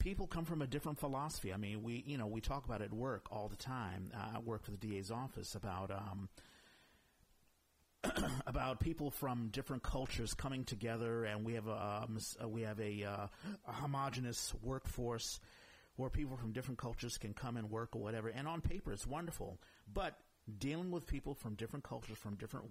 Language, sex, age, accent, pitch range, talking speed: English, male, 50-69, American, 105-135 Hz, 195 wpm